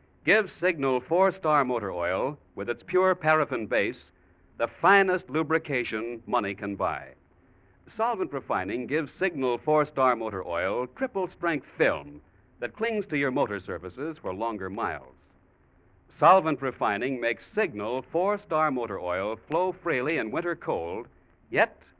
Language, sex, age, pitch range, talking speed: English, male, 60-79, 115-180 Hz, 130 wpm